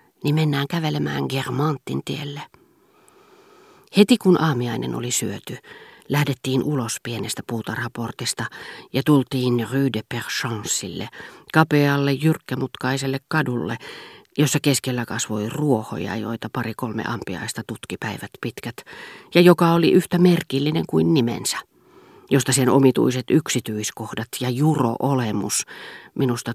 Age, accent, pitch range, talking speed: 40-59, native, 115-150 Hz, 100 wpm